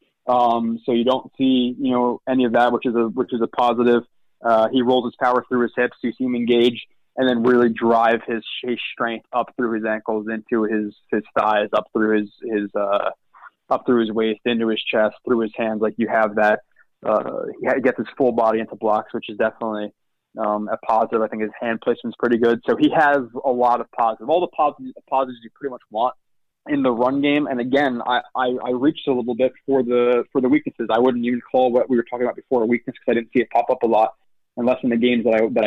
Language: English